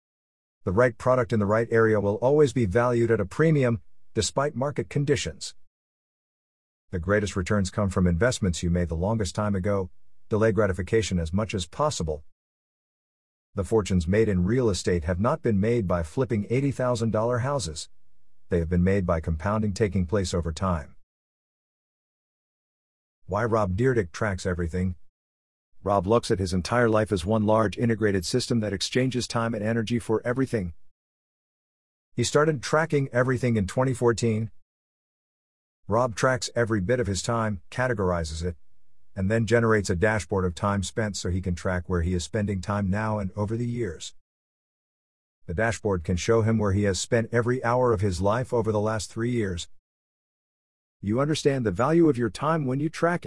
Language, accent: English, American